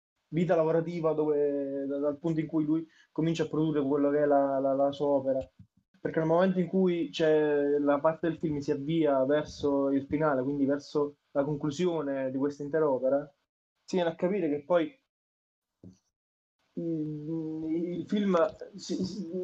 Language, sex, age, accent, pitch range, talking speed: Italian, male, 20-39, native, 145-165 Hz, 165 wpm